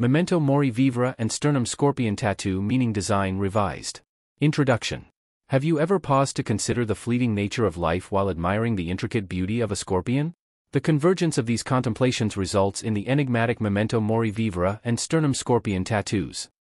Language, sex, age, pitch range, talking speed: English, male, 30-49, 105-140 Hz, 165 wpm